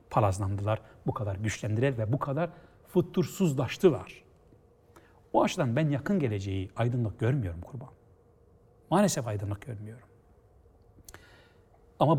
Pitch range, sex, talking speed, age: 105-150 Hz, male, 100 wpm, 60-79